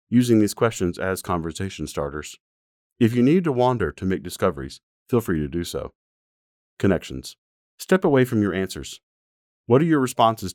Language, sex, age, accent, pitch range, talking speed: English, male, 40-59, American, 80-115 Hz, 165 wpm